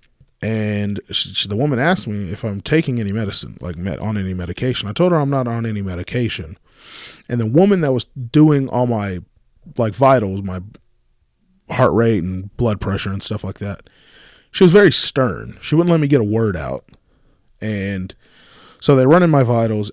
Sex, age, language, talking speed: male, 20-39, English, 195 wpm